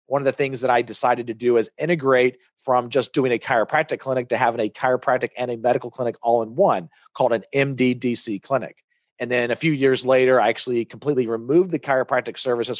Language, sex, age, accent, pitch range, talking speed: English, male, 40-59, American, 115-135 Hz, 210 wpm